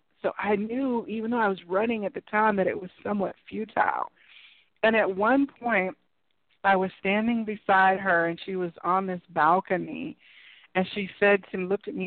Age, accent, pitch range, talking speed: 50-69, American, 175-210 Hz, 195 wpm